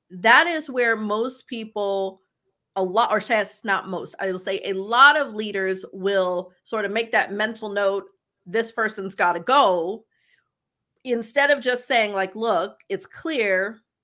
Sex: female